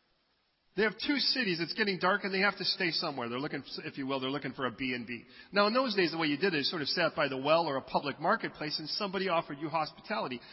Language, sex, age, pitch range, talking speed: English, male, 40-59, 165-230 Hz, 280 wpm